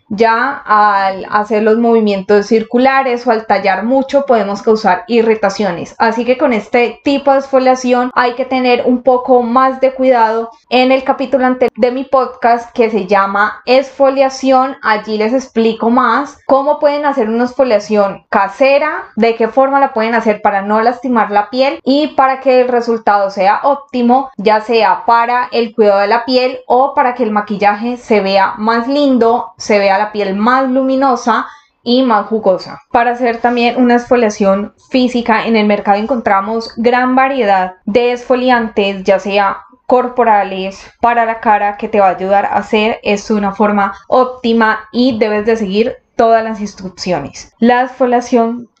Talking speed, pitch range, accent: 165 wpm, 210-255 Hz, Colombian